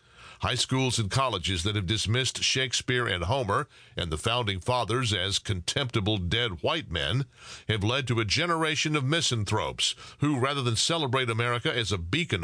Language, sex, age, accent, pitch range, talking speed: English, male, 50-69, American, 105-135 Hz, 165 wpm